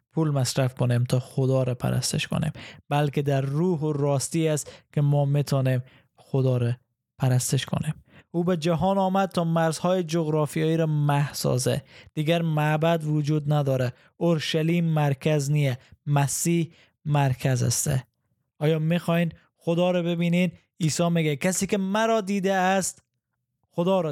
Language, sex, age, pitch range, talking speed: Persian, male, 20-39, 135-170 Hz, 135 wpm